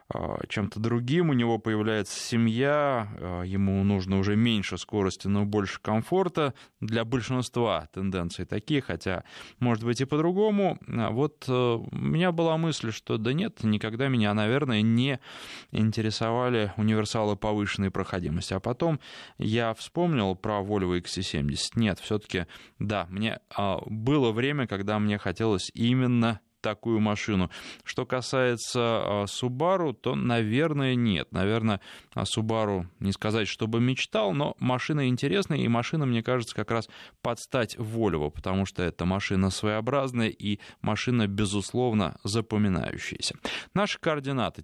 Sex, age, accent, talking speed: male, 20-39, native, 130 wpm